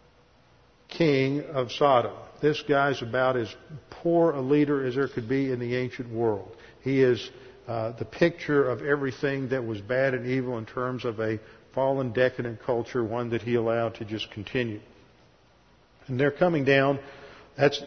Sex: male